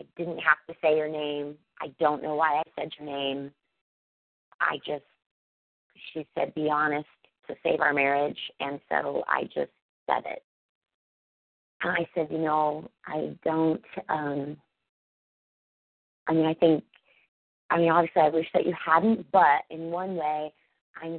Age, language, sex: 30-49, English, female